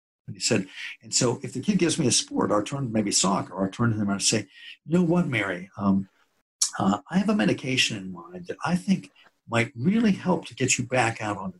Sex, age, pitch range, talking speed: male, 60-79, 110-170 Hz, 240 wpm